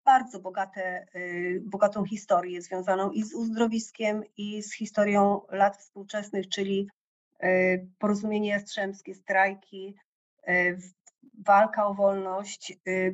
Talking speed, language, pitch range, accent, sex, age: 90 wpm, Polish, 195-220 Hz, native, female, 30-49